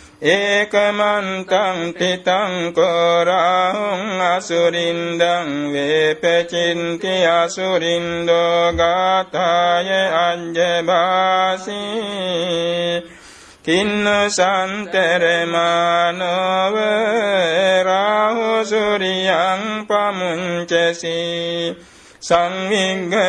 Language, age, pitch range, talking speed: Vietnamese, 60-79, 170-190 Hz, 45 wpm